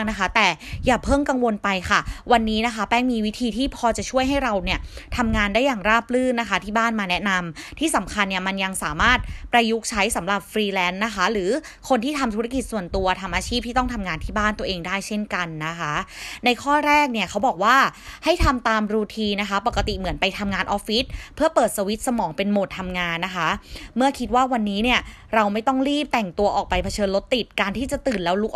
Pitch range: 195-245 Hz